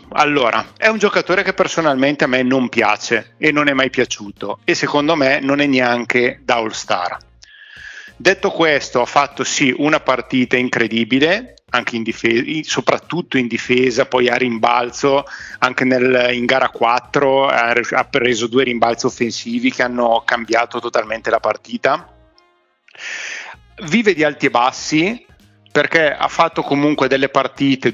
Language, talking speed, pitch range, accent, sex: Italian, 150 wpm, 125-160 Hz, native, male